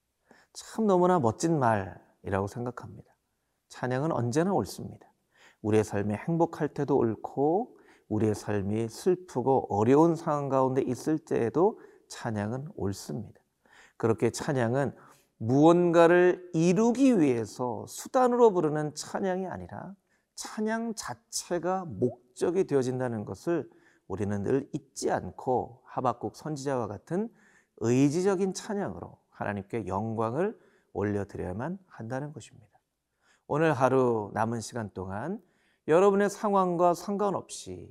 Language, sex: Korean, male